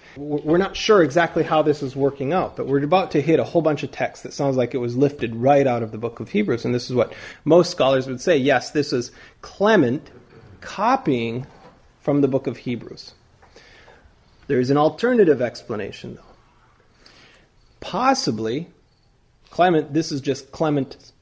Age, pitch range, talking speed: 30-49, 120-165 Hz, 175 wpm